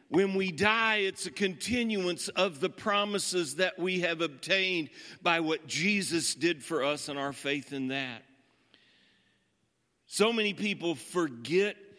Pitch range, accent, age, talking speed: 140-205 Hz, American, 50-69, 140 wpm